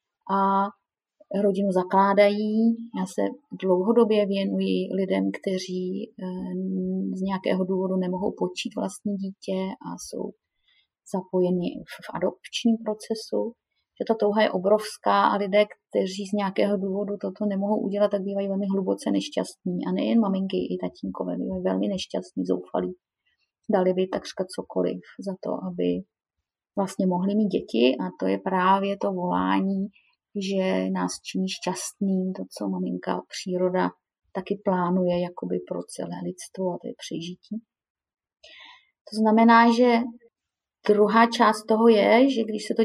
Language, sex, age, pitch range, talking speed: Czech, female, 30-49, 175-215 Hz, 135 wpm